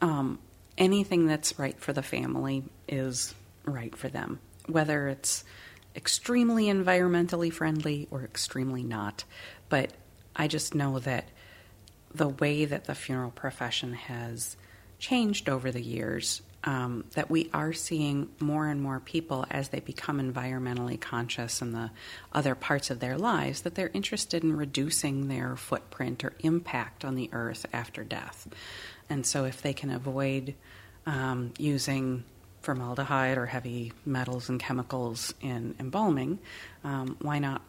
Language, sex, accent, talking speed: English, female, American, 140 wpm